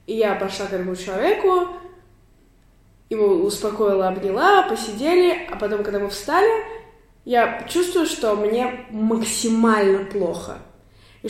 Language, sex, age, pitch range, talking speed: Russian, female, 20-39, 200-240 Hz, 115 wpm